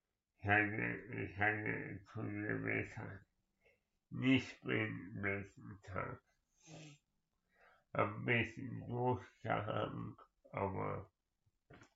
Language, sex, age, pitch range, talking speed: German, male, 60-79, 105-130 Hz, 60 wpm